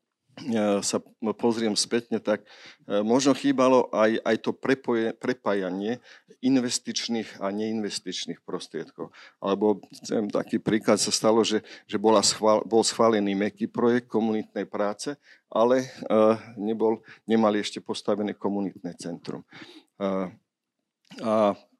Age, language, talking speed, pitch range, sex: 50-69, Slovak, 110 wpm, 100-115 Hz, male